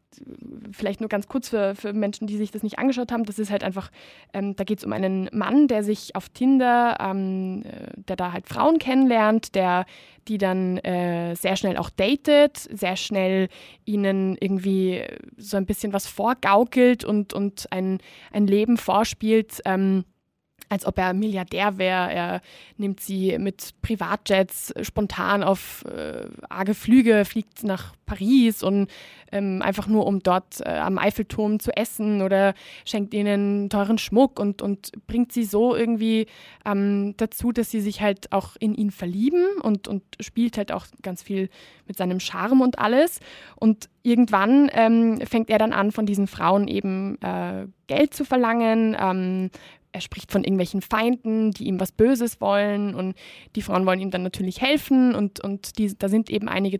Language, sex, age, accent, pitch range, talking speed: German, female, 20-39, German, 190-225 Hz, 170 wpm